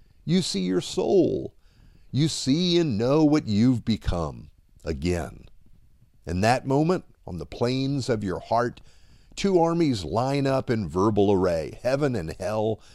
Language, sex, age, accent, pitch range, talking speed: English, male, 50-69, American, 95-145 Hz, 145 wpm